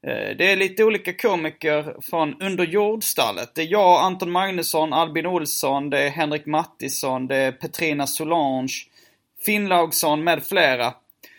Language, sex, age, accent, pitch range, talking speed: Swedish, male, 30-49, native, 155-195 Hz, 135 wpm